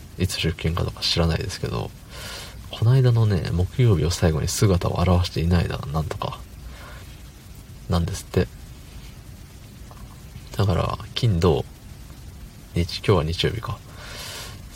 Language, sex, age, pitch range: Japanese, male, 40-59, 85-110 Hz